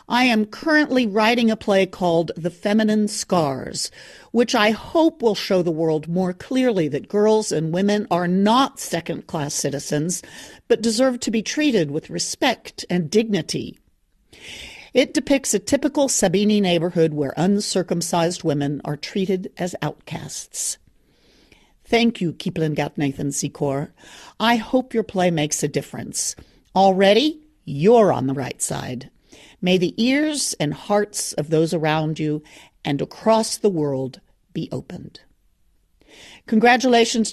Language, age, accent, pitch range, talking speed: English, 50-69, American, 170-245 Hz, 135 wpm